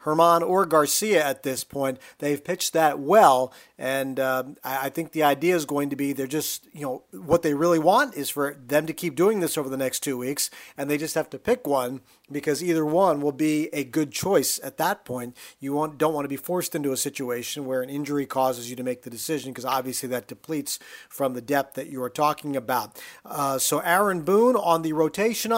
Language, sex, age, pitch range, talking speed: English, male, 40-59, 140-180 Hz, 225 wpm